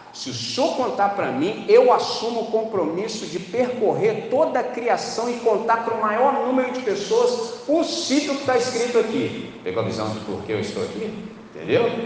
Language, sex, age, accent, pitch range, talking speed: Portuguese, male, 40-59, Brazilian, 115-155 Hz, 185 wpm